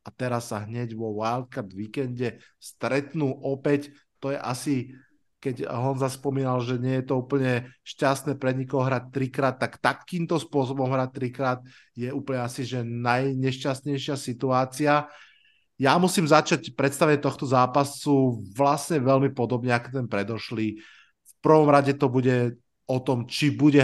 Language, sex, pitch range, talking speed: Slovak, male, 125-145 Hz, 145 wpm